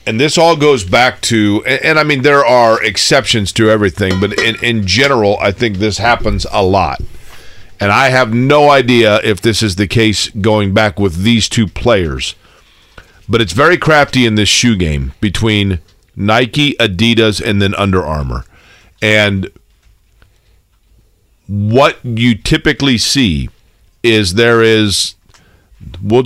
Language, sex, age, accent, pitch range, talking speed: English, male, 40-59, American, 100-120 Hz, 145 wpm